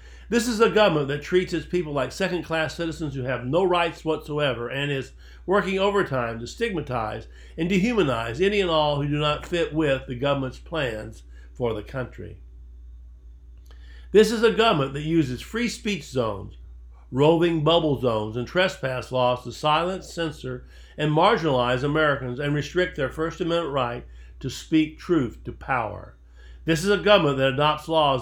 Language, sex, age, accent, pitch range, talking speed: English, male, 60-79, American, 125-170 Hz, 165 wpm